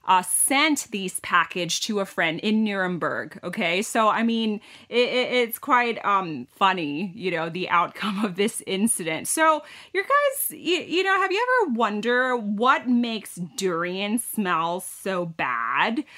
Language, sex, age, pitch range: Thai, female, 30-49, 185-275 Hz